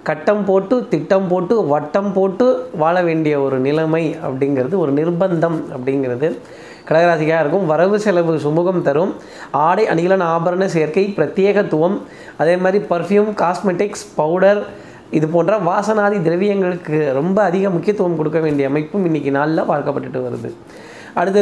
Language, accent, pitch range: Tamil, native, 155-185 Hz